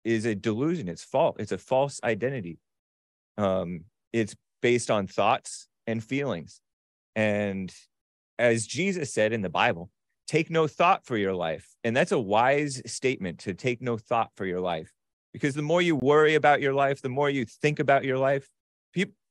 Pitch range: 95-140 Hz